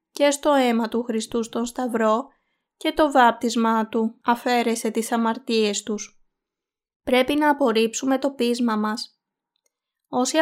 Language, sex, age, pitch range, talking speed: Greek, female, 20-39, 220-260 Hz, 125 wpm